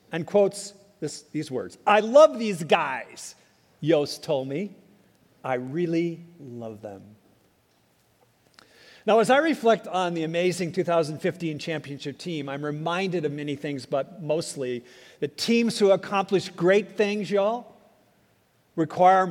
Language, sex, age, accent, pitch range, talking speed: English, male, 50-69, American, 150-205 Hz, 125 wpm